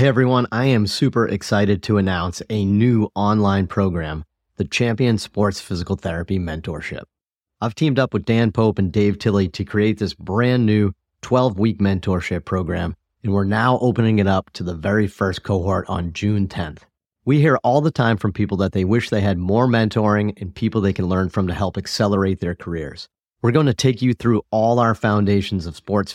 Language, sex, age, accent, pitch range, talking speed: English, male, 30-49, American, 95-115 Hz, 195 wpm